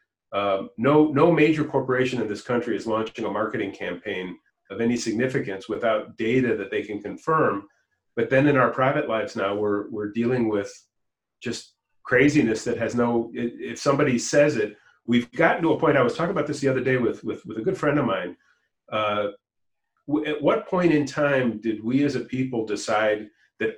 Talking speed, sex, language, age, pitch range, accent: 190 wpm, male, English, 40-59, 120-160 Hz, American